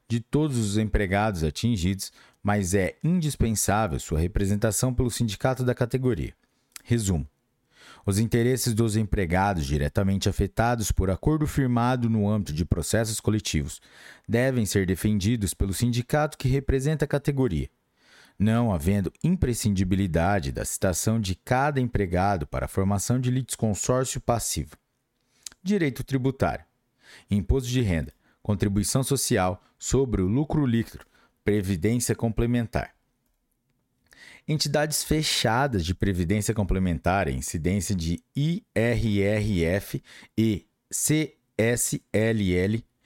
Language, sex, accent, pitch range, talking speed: Portuguese, male, Brazilian, 100-125 Hz, 105 wpm